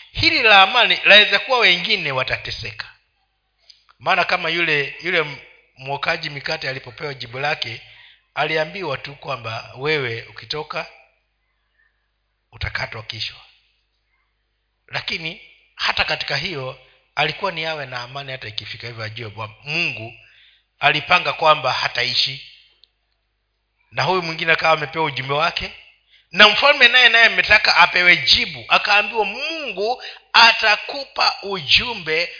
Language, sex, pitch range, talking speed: Swahili, male, 130-200 Hz, 105 wpm